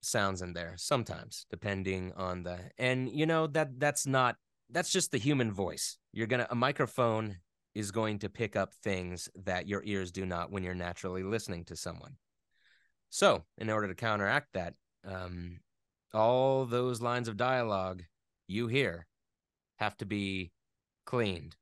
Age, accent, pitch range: 30-49, American, 95-115 Hz